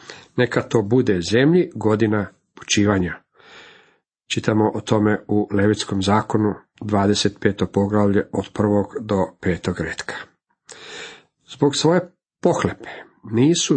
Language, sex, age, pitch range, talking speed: Croatian, male, 50-69, 105-150 Hz, 100 wpm